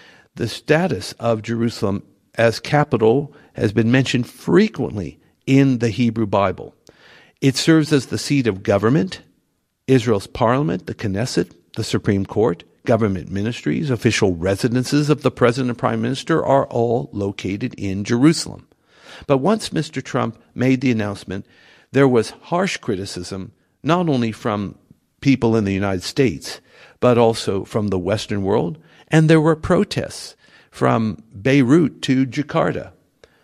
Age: 60-79